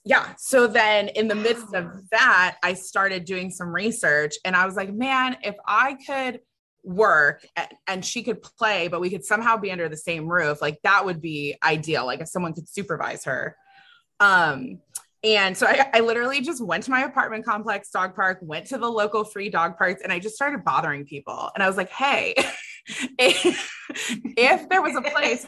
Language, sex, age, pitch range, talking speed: English, female, 20-39, 180-230 Hz, 200 wpm